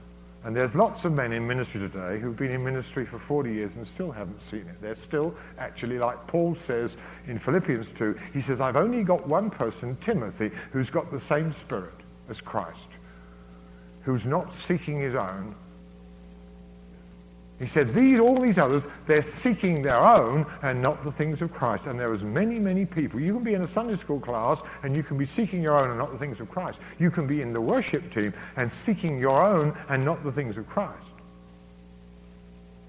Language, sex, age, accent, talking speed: English, male, 50-69, British, 200 wpm